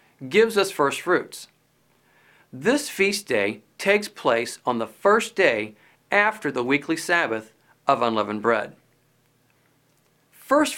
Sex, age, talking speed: male, 50-69, 115 wpm